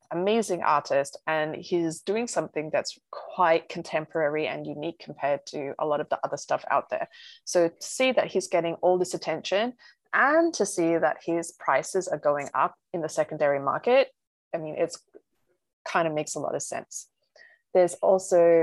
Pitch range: 165-250 Hz